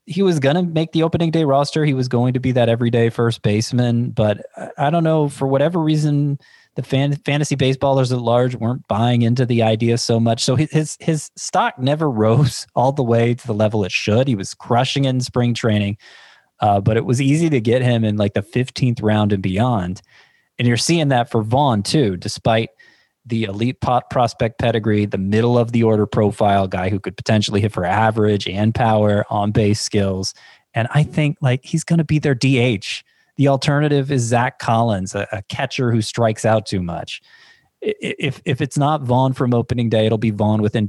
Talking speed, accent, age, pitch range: 205 wpm, American, 20-39, 110-140 Hz